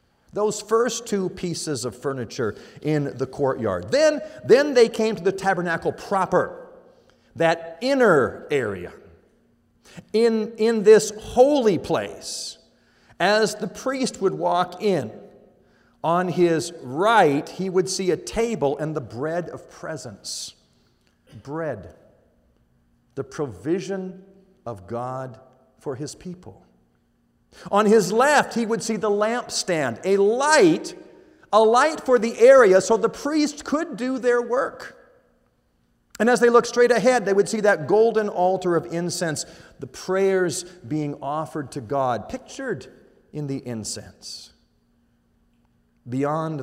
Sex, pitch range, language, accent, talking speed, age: male, 135-225 Hz, English, American, 130 wpm, 50-69